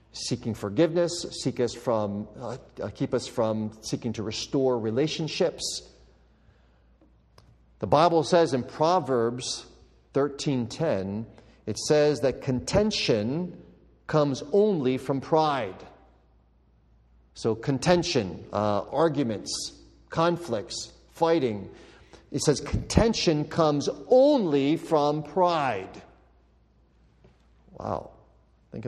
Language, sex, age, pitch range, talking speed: English, male, 50-69, 110-165 Hz, 80 wpm